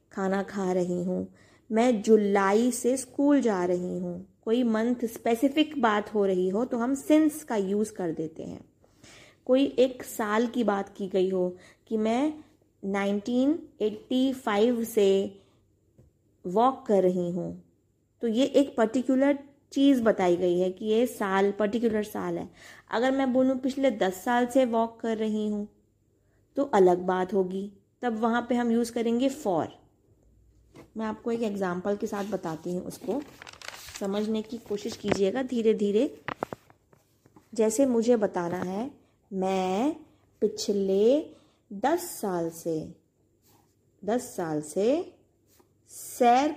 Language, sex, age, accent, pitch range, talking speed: Hindi, female, 20-39, native, 170-245 Hz, 140 wpm